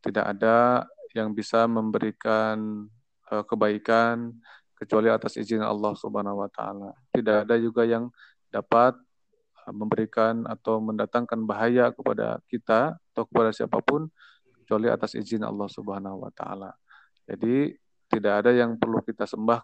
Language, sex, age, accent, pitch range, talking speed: Indonesian, male, 30-49, native, 105-115 Hz, 125 wpm